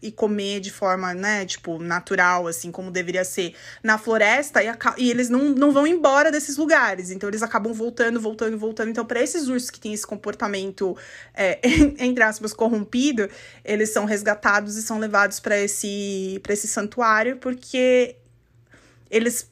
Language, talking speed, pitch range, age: Portuguese, 165 wpm, 200-245 Hz, 20-39